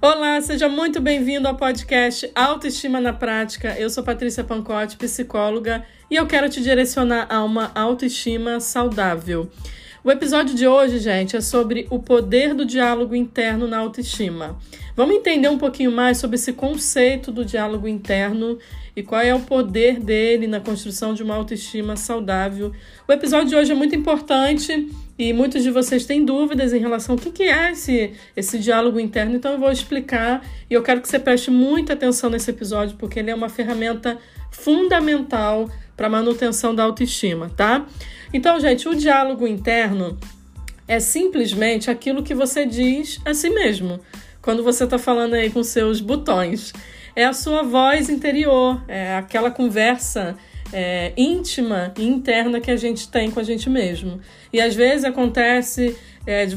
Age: 20-39